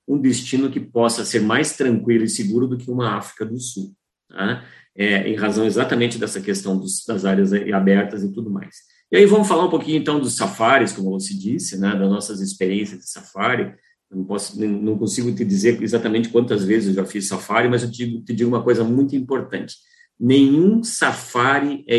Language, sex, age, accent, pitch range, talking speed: Portuguese, male, 50-69, Brazilian, 100-125 Hz, 200 wpm